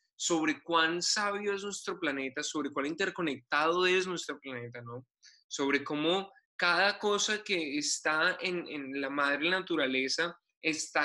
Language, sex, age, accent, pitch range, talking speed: Spanish, male, 20-39, Colombian, 145-185 Hz, 135 wpm